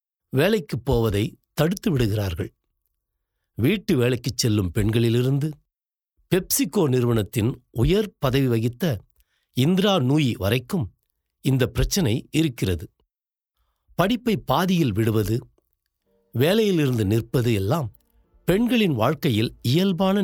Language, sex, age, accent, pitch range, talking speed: Tamil, male, 60-79, native, 105-155 Hz, 80 wpm